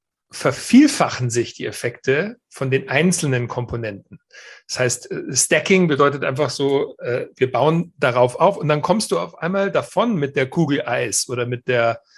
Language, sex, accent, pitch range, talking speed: German, male, German, 125-170 Hz, 160 wpm